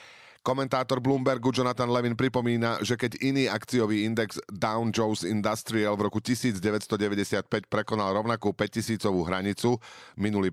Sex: male